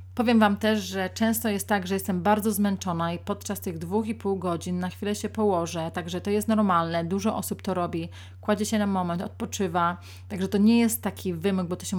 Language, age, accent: Polish, 30-49, native